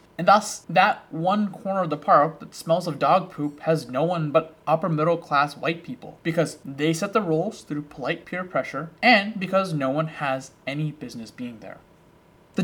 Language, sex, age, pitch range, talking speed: English, male, 20-39, 145-200 Hz, 195 wpm